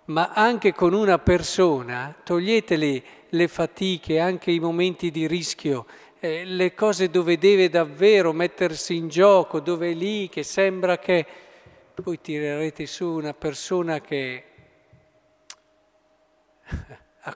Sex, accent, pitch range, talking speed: male, native, 145-185 Hz, 120 wpm